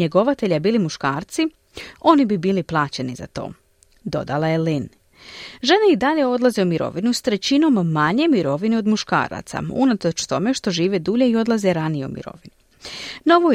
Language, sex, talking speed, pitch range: Croatian, female, 155 wpm, 165-260 Hz